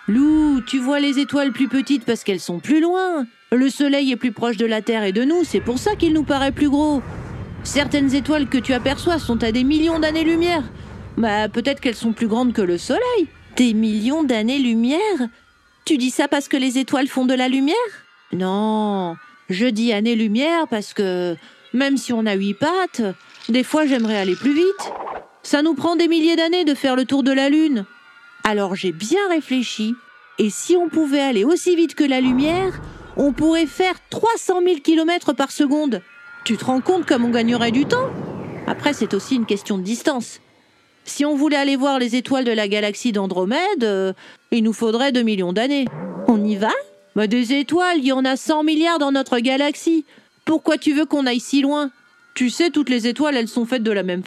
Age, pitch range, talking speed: 40-59, 230-305 Hz, 200 wpm